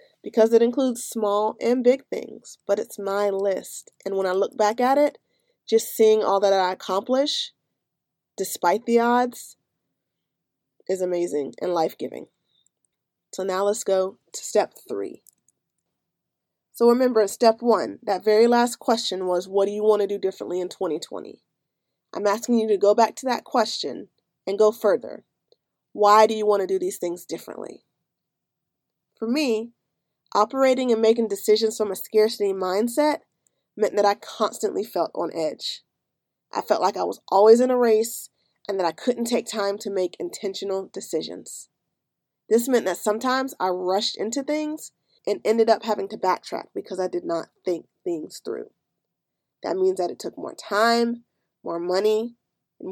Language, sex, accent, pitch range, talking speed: English, female, American, 195-240 Hz, 165 wpm